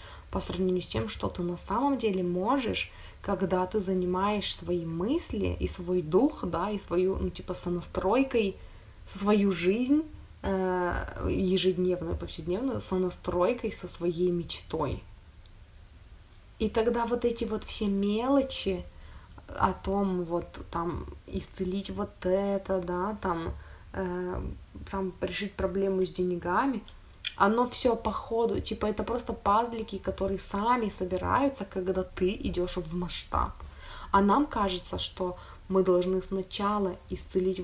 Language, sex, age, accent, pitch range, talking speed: Russian, female, 20-39, native, 175-205 Hz, 125 wpm